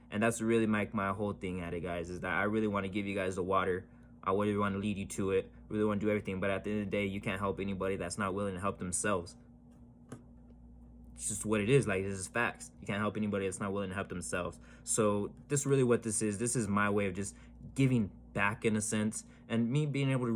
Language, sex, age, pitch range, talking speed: English, male, 20-39, 95-115 Hz, 275 wpm